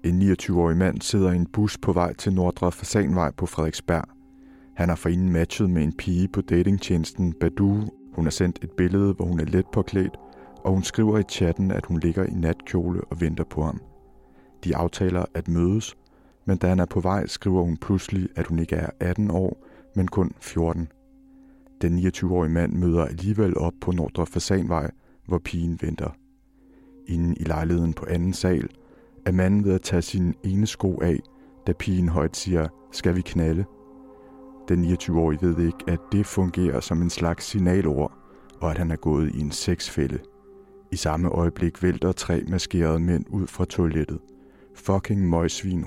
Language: Danish